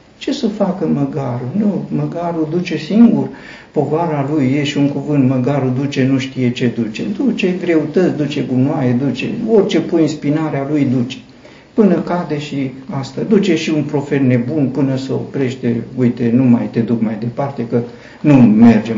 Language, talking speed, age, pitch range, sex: Romanian, 170 wpm, 50-69, 125-165 Hz, male